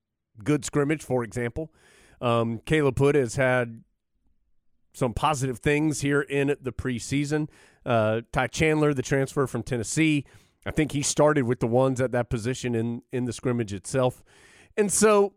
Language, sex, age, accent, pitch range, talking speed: English, male, 30-49, American, 125-160 Hz, 155 wpm